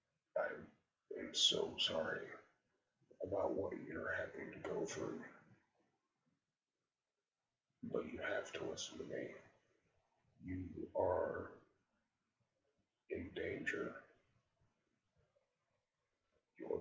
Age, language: 50-69, English